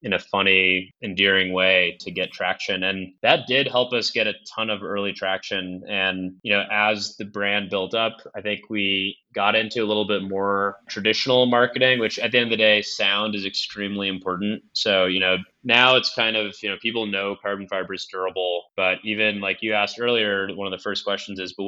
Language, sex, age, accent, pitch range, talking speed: English, male, 20-39, American, 95-110 Hz, 215 wpm